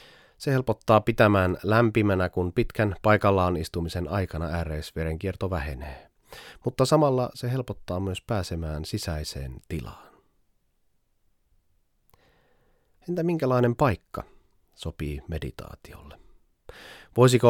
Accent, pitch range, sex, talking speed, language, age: native, 80-115 Hz, male, 85 wpm, Finnish, 30-49